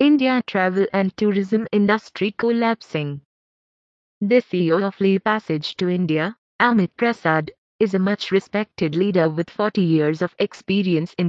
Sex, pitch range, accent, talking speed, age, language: female, 175-215 Hz, Indian, 140 wpm, 20-39, English